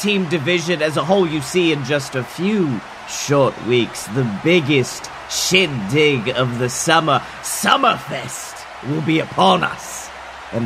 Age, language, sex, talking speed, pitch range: 30-49, English, male, 140 wpm, 135-180 Hz